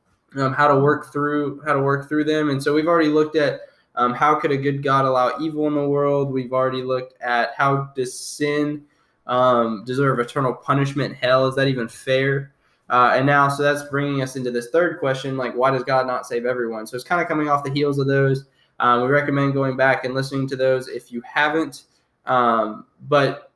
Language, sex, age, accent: English, male, 10-29, American